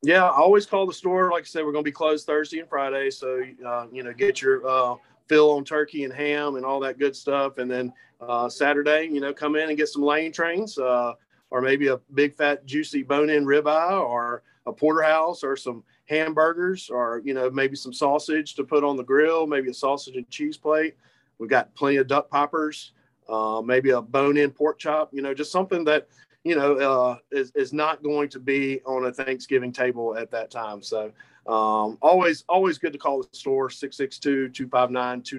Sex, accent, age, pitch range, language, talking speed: male, American, 40-59, 125-150 Hz, English, 210 wpm